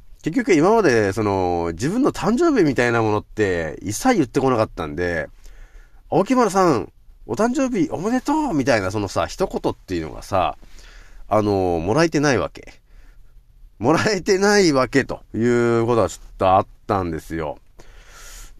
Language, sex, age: Japanese, male, 30-49